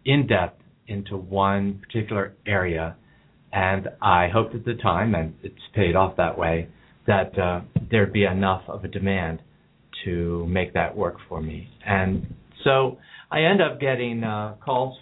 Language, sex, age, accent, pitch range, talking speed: English, male, 50-69, American, 95-120 Hz, 160 wpm